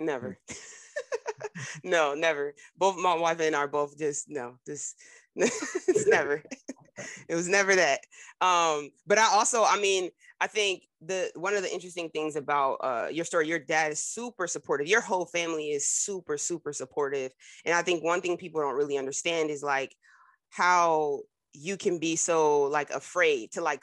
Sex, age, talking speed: female, 30-49, 175 wpm